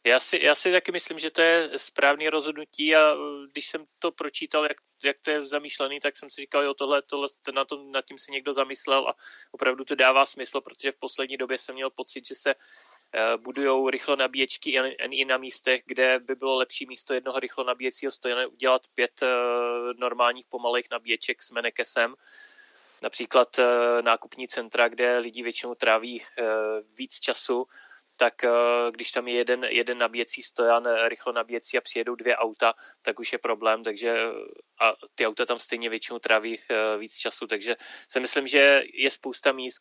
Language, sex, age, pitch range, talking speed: Czech, male, 30-49, 115-140 Hz, 175 wpm